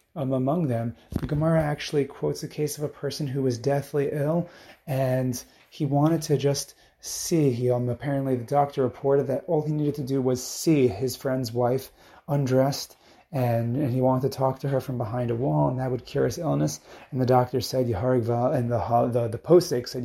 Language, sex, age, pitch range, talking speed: English, male, 30-49, 120-135 Hz, 200 wpm